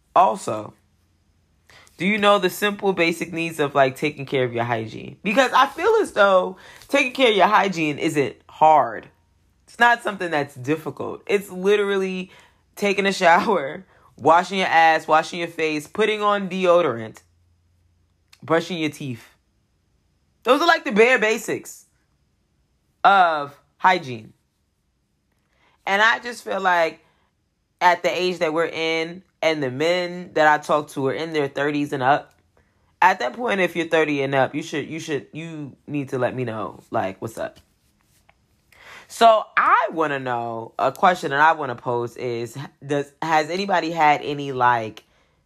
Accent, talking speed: American, 160 wpm